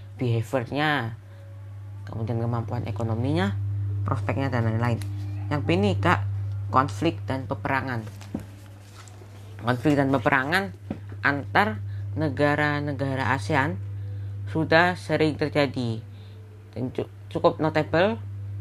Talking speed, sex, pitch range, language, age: 75 wpm, female, 100-135 Hz, Indonesian, 20-39